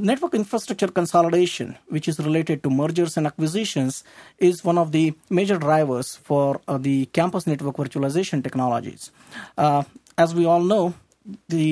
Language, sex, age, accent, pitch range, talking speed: English, male, 50-69, Indian, 145-190 Hz, 150 wpm